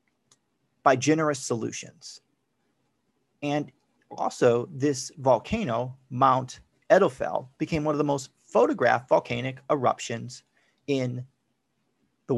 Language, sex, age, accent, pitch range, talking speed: English, male, 30-49, American, 150-225 Hz, 90 wpm